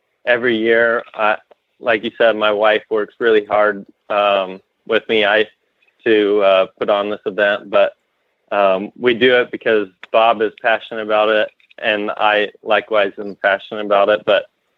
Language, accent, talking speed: English, American, 160 wpm